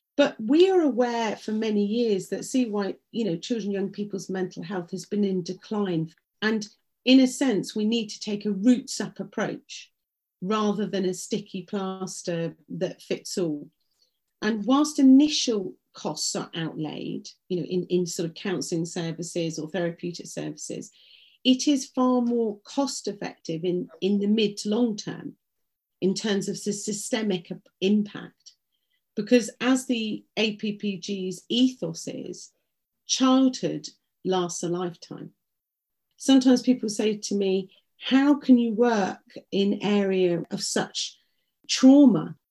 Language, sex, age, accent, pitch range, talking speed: English, female, 40-59, British, 185-235 Hz, 140 wpm